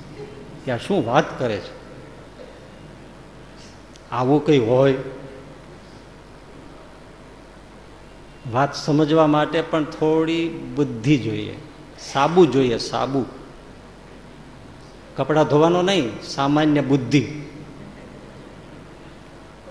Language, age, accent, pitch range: Gujarati, 70-89, native, 130-165 Hz